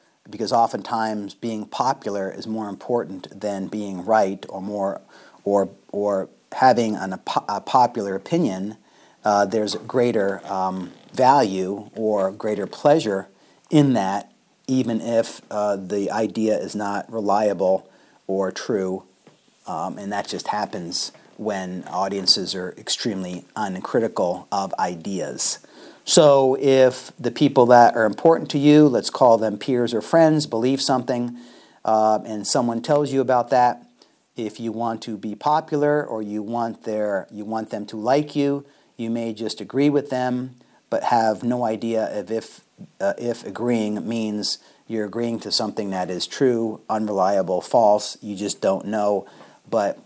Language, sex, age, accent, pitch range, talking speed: English, male, 40-59, American, 100-120 Hz, 140 wpm